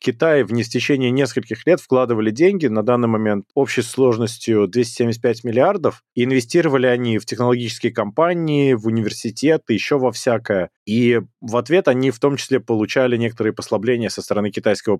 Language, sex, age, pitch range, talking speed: Russian, male, 20-39, 110-135 Hz, 150 wpm